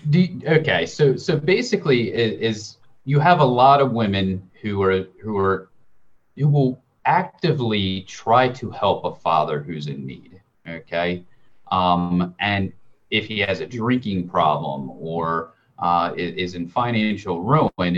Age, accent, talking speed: 30-49, American, 150 wpm